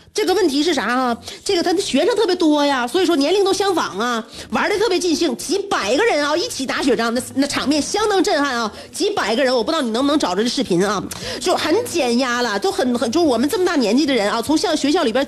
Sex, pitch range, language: female, 235-345 Hz, Chinese